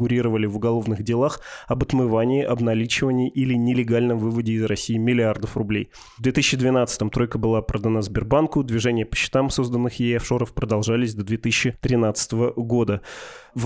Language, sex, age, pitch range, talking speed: Russian, male, 20-39, 110-120 Hz, 130 wpm